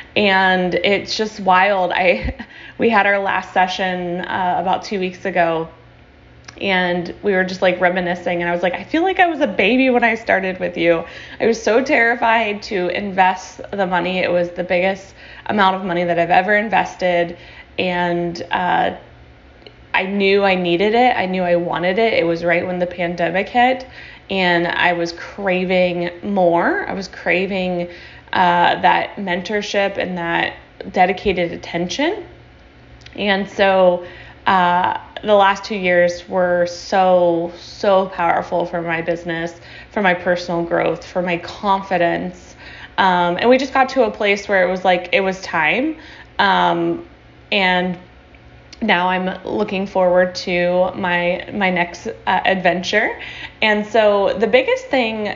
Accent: American